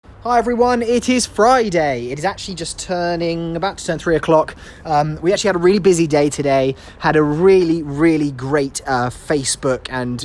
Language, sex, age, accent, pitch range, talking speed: English, male, 20-39, British, 125-150 Hz, 185 wpm